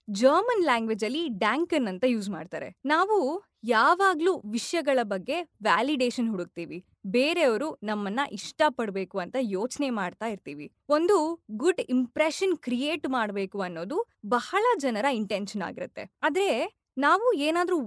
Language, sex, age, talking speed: Kannada, female, 20-39, 115 wpm